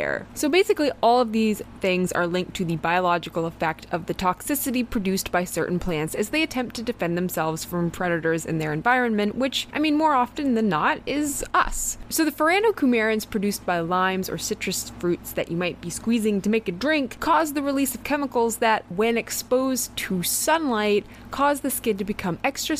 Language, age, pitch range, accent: English, 20-39, 175-245 Hz, American